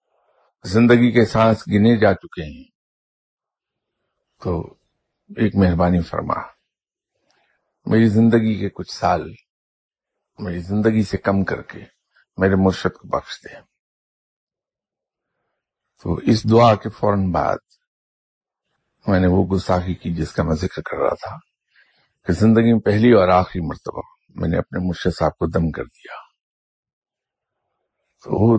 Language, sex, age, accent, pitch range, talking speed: English, male, 60-79, Indian, 90-115 Hz, 120 wpm